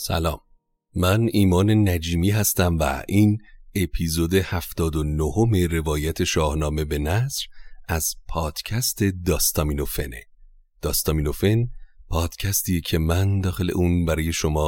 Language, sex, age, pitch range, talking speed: Persian, male, 30-49, 80-95 Hz, 100 wpm